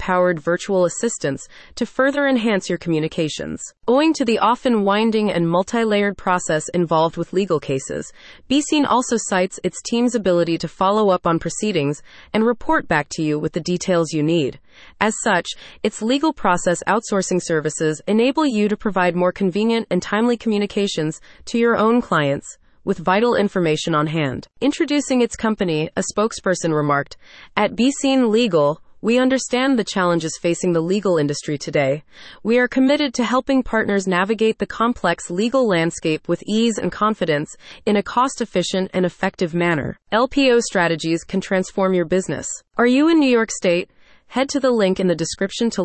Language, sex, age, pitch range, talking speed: English, female, 30-49, 170-235 Hz, 165 wpm